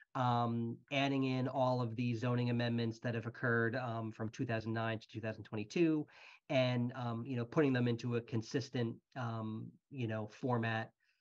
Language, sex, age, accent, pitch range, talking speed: English, male, 40-59, American, 115-130 Hz, 155 wpm